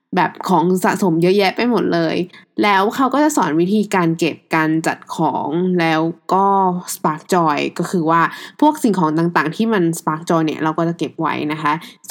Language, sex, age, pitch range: Thai, female, 20-39, 165-215 Hz